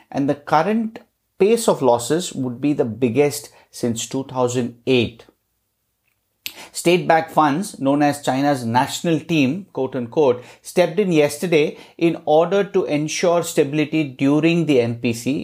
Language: English